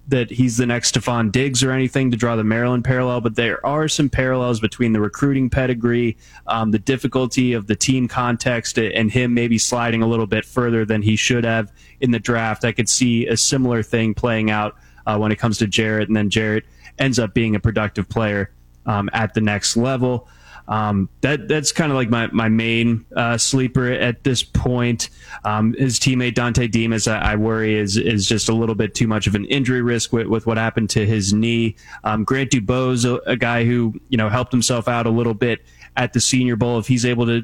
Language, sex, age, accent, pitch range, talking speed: English, male, 20-39, American, 110-125 Hz, 220 wpm